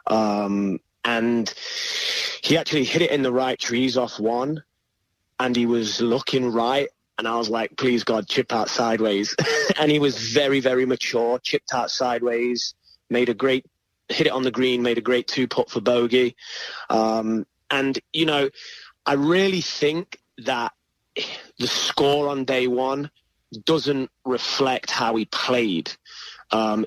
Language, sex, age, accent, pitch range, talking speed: English, male, 30-49, British, 120-145 Hz, 155 wpm